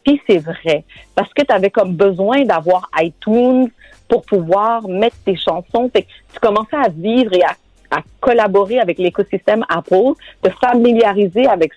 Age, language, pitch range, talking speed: 50-69, French, 175-230 Hz, 155 wpm